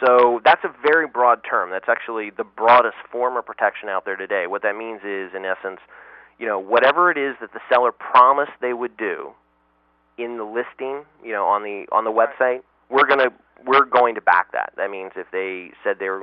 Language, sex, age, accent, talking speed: English, male, 30-49, American, 215 wpm